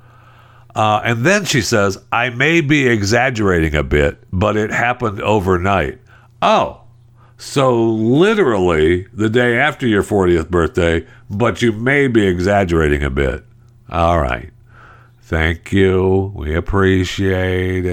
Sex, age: male, 60-79